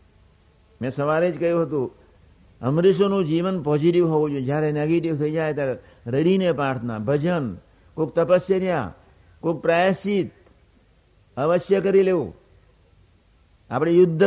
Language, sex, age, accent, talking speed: Gujarati, male, 60-79, native, 90 wpm